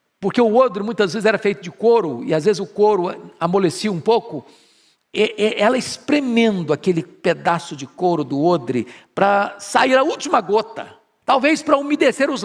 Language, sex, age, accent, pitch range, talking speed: Portuguese, male, 50-69, Brazilian, 195-285 Hz, 165 wpm